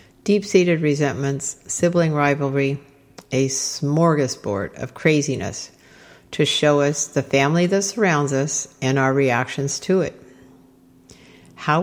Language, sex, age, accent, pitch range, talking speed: English, female, 60-79, American, 130-170 Hz, 110 wpm